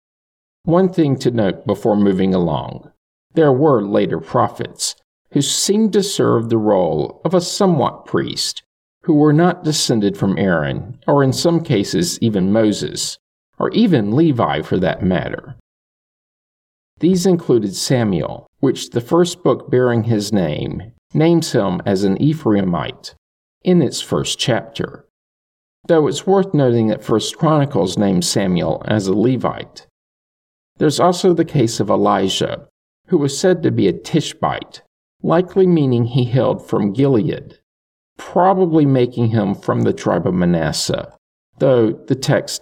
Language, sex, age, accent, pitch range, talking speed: English, male, 50-69, American, 105-165 Hz, 140 wpm